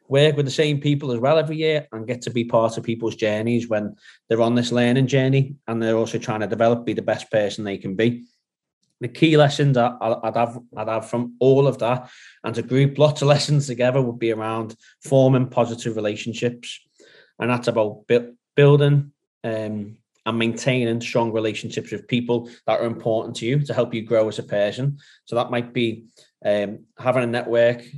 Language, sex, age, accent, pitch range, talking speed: English, male, 20-39, British, 115-135 Hz, 195 wpm